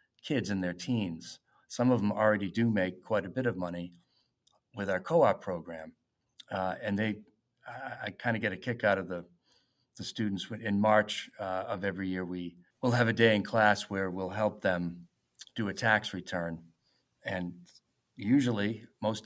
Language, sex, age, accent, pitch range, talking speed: English, male, 40-59, American, 95-125 Hz, 180 wpm